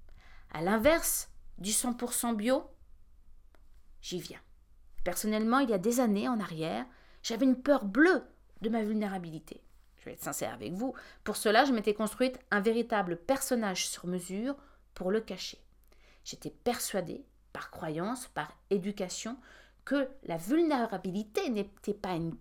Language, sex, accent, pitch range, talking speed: French, female, French, 185-270 Hz, 140 wpm